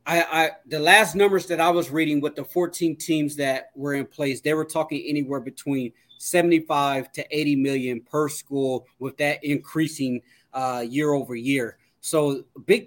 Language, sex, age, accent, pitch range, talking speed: English, male, 30-49, American, 140-165 Hz, 175 wpm